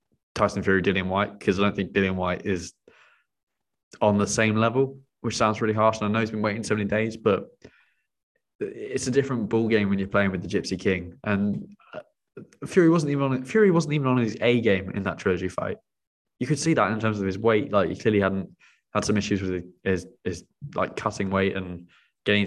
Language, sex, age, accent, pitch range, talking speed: English, male, 20-39, British, 95-115 Hz, 220 wpm